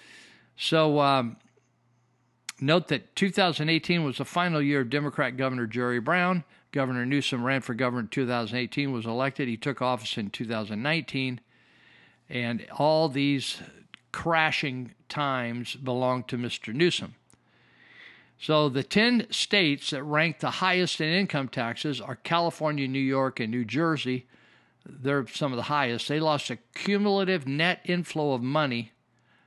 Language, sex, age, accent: English, male, 50-69, American